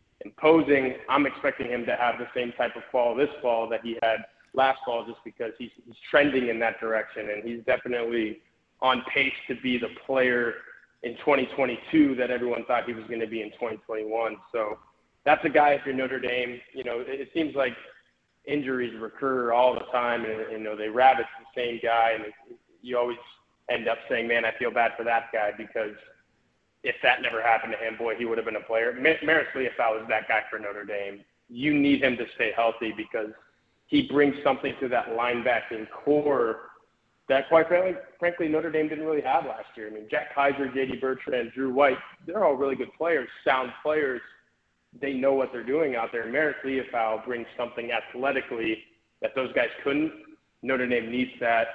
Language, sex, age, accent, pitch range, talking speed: English, male, 20-39, American, 115-135 Hz, 195 wpm